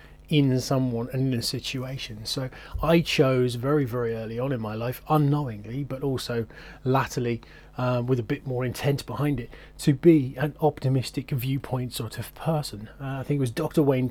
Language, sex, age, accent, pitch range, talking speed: English, male, 30-49, British, 120-150 Hz, 185 wpm